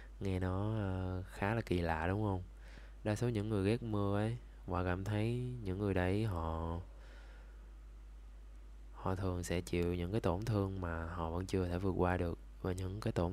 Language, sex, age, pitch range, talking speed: Vietnamese, male, 20-39, 80-100 Hz, 195 wpm